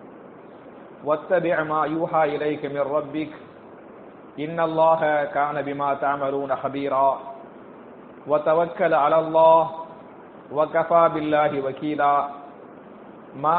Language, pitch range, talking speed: English, 150-175 Hz, 85 wpm